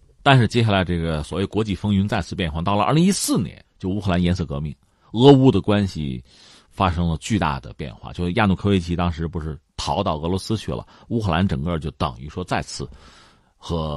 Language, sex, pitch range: Chinese, male, 80-130 Hz